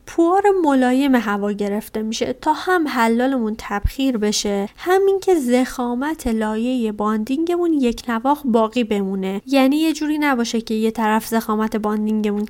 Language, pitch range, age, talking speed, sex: Persian, 220-285 Hz, 30-49, 140 wpm, female